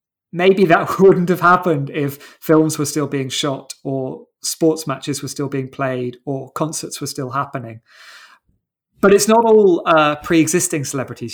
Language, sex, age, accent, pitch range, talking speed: English, male, 30-49, British, 135-165 Hz, 160 wpm